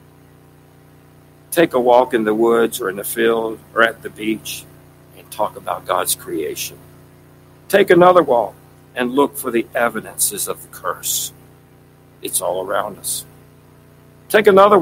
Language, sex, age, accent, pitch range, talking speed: English, male, 60-79, American, 115-165 Hz, 145 wpm